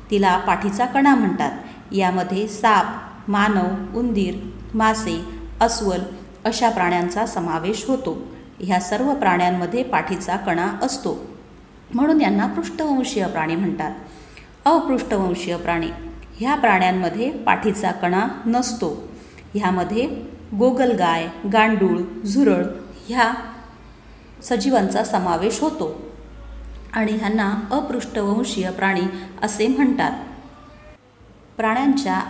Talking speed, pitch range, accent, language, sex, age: 85 wpm, 185-240 Hz, native, Marathi, female, 30-49